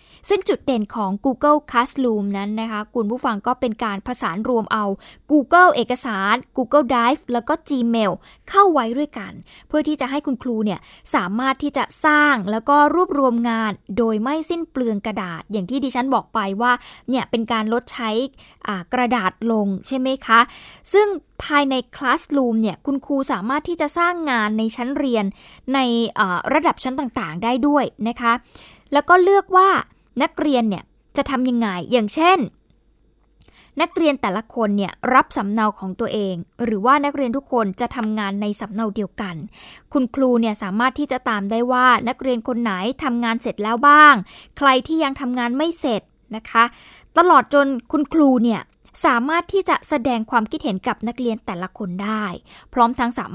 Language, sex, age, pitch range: Thai, female, 20-39, 220-285 Hz